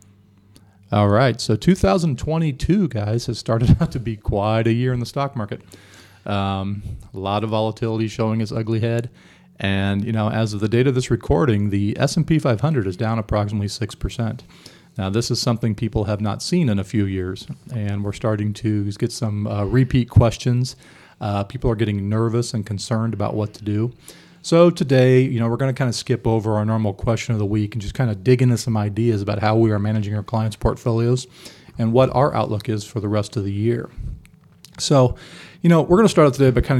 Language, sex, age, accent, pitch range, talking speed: English, male, 40-59, American, 105-125 Hz, 210 wpm